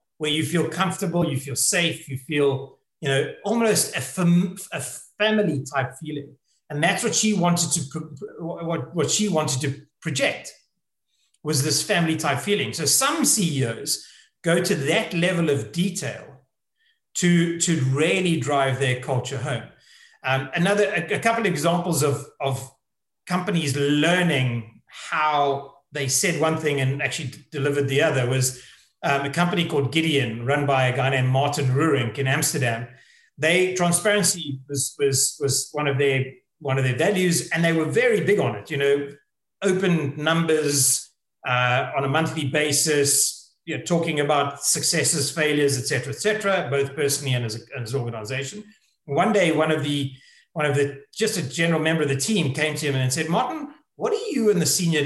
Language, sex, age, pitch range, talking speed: English, male, 30-49, 140-170 Hz, 175 wpm